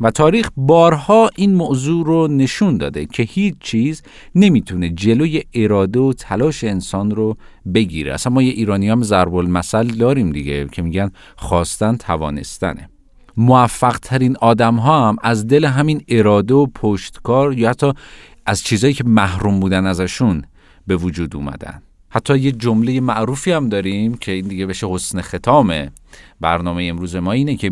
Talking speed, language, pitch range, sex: 150 wpm, Persian, 95-140 Hz, male